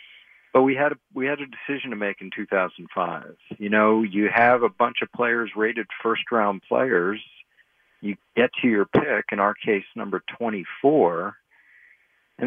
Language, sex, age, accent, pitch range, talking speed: English, male, 50-69, American, 100-130 Hz, 160 wpm